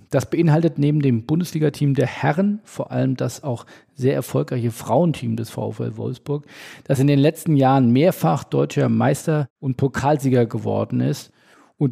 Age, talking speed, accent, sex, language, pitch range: 50-69, 150 wpm, German, male, German, 120-145 Hz